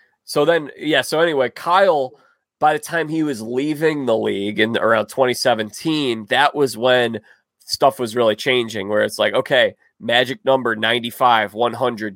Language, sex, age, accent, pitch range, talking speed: English, male, 20-39, American, 115-150 Hz, 160 wpm